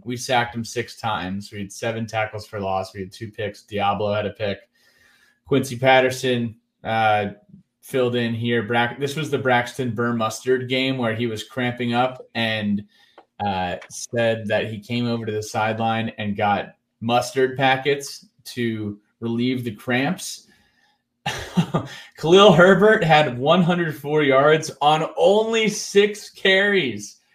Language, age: English, 20-39